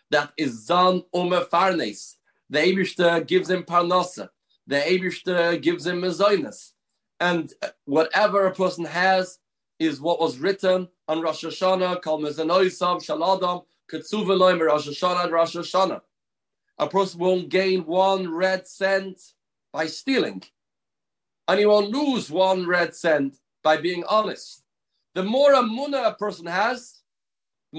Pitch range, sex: 155-195 Hz, male